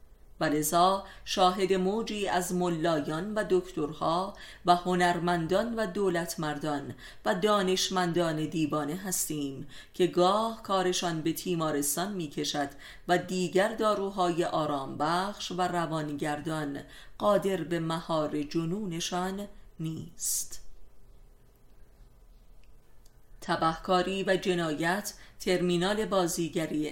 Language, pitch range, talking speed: Persian, 155-185 Hz, 85 wpm